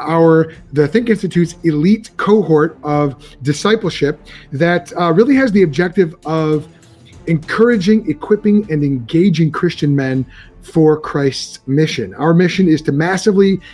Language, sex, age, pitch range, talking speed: English, male, 30-49, 145-180 Hz, 125 wpm